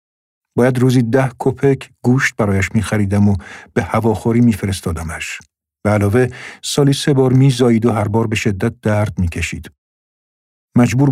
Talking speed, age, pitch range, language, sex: 140 wpm, 50-69, 95-125 Hz, Persian, male